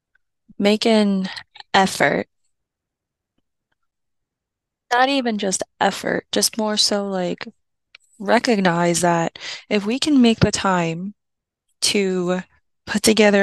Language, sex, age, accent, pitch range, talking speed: English, female, 20-39, American, 175-215 Hz, 100 wpm